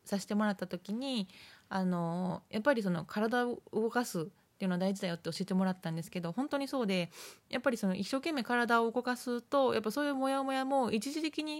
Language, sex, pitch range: Japanese, female, 185-245 Hz